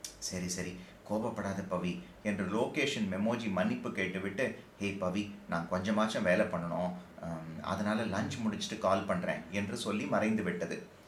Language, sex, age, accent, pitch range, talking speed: Tamil, male, 30-49, native, 100-135 Hz, 130 wpm